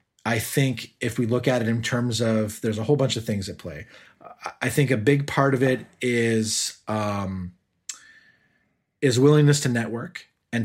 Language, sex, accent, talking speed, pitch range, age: English, male, American, 180 wpm, 110-140 Hz, 30-49